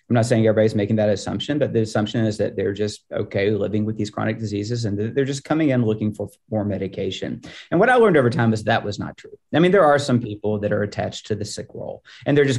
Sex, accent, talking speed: male, American, 265 wpm